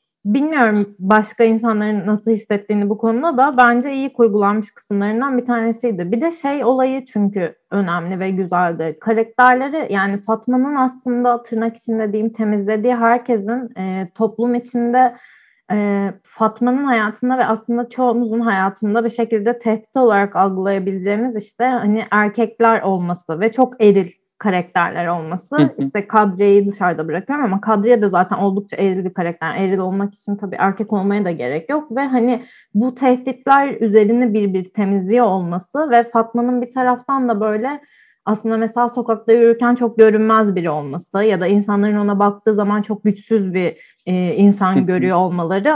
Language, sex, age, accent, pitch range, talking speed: Turkish, female, 30-49, native, 200-240 Hz, 145 wpm